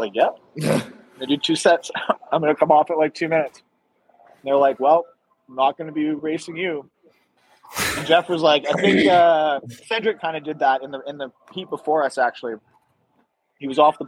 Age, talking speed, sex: 30-49, 200 wpm, male